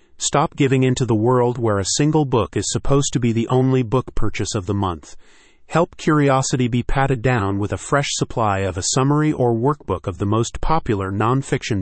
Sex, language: male, English